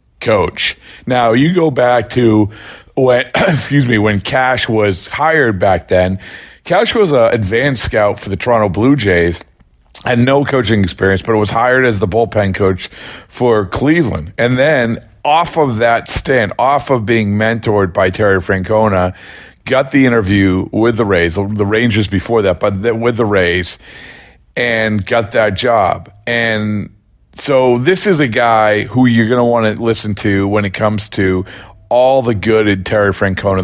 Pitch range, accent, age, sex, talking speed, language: 95-120 Hz, American, 40-59, male, 170 wpm, English